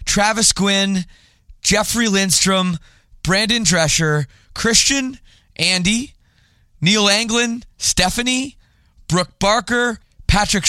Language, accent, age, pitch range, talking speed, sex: English, American, 20-39, 135-190 Hz, 80 wpm, male